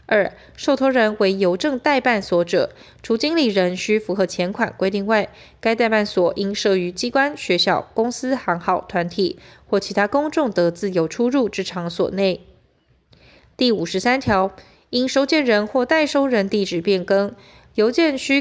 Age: 20-39